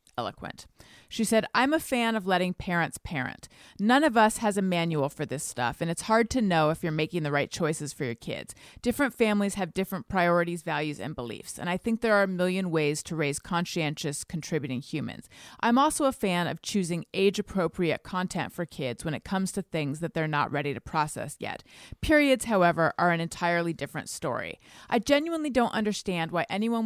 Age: 30-49